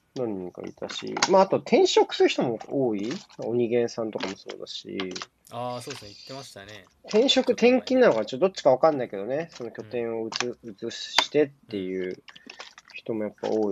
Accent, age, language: native, 20-39, Japanese